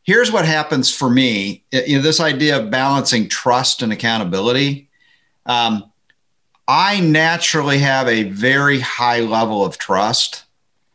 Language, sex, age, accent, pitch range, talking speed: English, male, 50-69, American, 115-150 Hz, 130 wpm